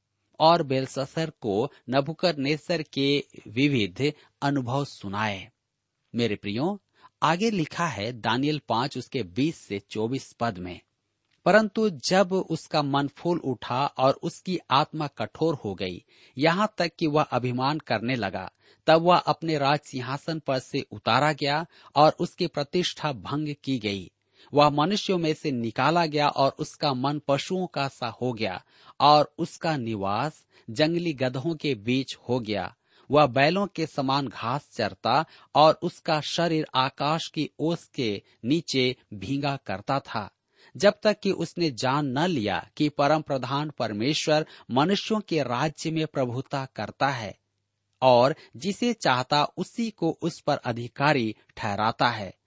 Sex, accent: male, native